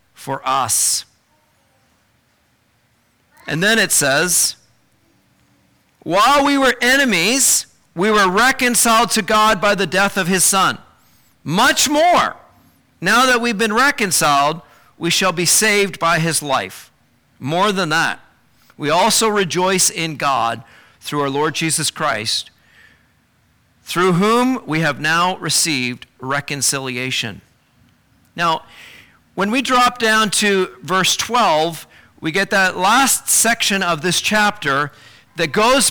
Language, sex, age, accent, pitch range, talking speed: English, male, 50-69, American, 155-225 Hz, 120 wpm